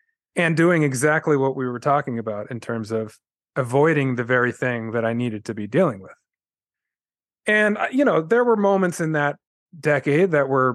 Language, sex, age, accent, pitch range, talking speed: English, male, 30-49, American, 120-145 Hz, 185 wpm